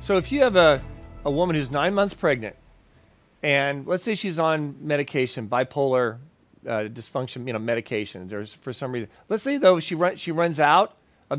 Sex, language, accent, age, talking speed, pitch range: male, English, American, 40-59, 190 wpm, 125-165 Hz